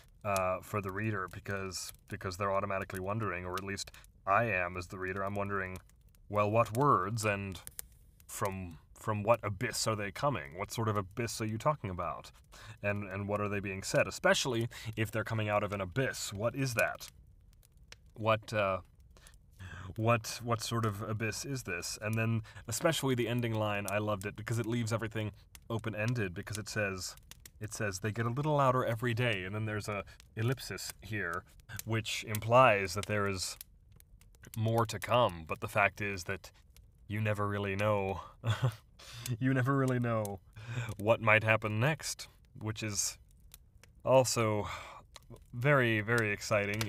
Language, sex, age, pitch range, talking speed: English, male, 30-49, 100-115 Hz, 165 wpm